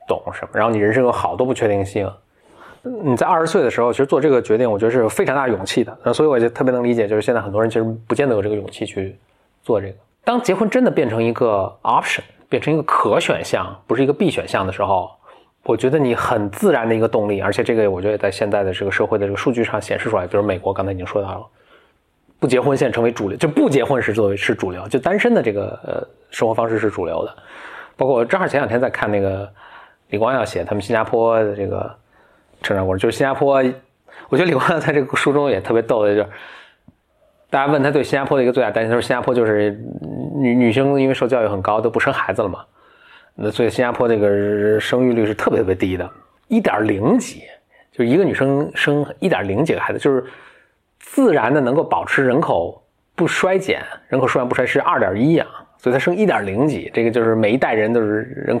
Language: Chinese